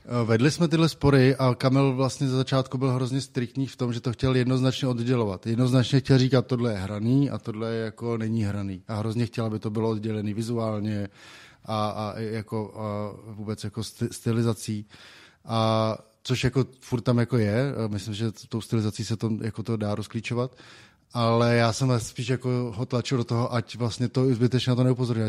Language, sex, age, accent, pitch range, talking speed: Czech, male, 20-39, native, 110-125 Hz, 185 wpm